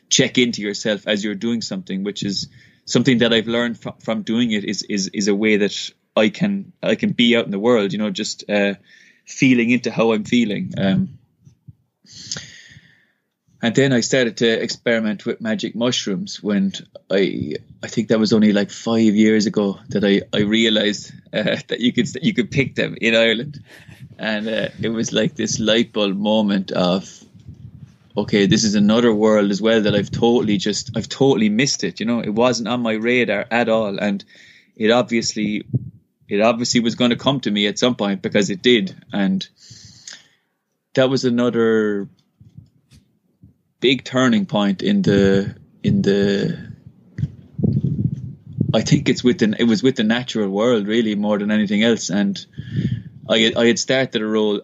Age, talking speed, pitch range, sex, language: 20-39, 175 wpm, 105-125 Hz, male, English